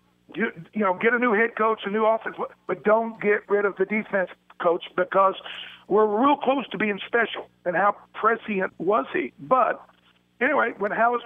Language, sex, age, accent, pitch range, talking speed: English, male, 50-69, American, 180-220 Hz, 185 wpm